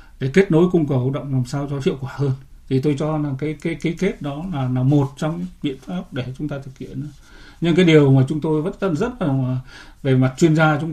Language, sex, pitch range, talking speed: Vietnamese, male, 130-155 Hz, 265 wpm